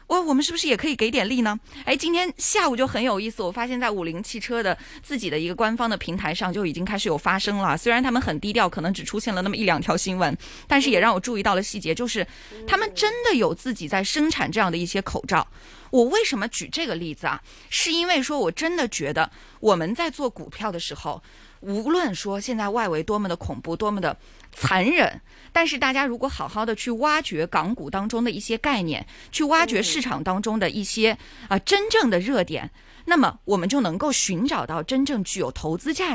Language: Chinese